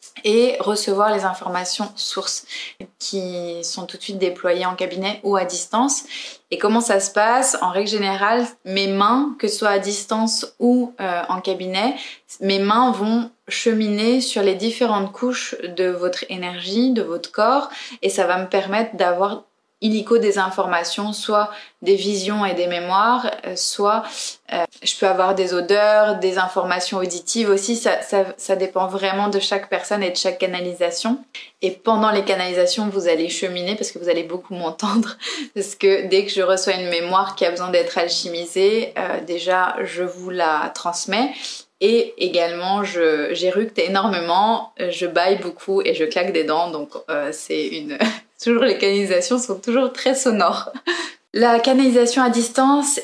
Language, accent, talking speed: French, French, 165 wpm